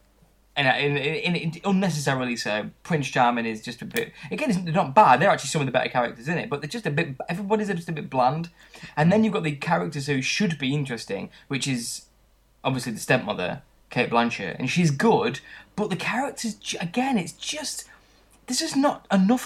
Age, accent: 20-39, British